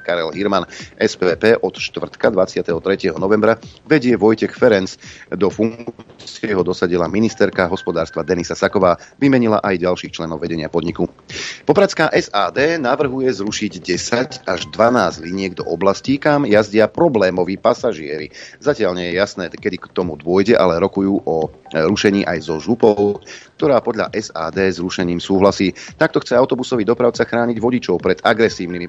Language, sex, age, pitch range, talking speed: Slovak, male, 30-49, 90-120 Hz, 140 wpm